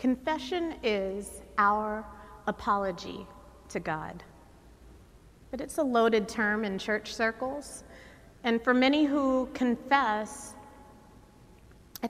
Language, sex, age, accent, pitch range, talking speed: English, female, 30-49, American, 215-270 Hz, 100 wpm